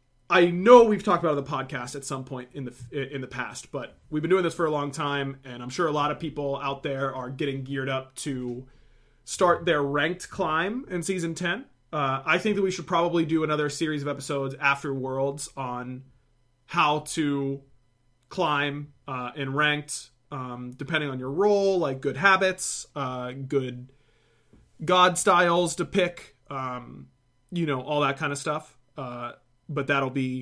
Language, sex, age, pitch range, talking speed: English, male, 30-49, 130-165 Hz, 185 wpm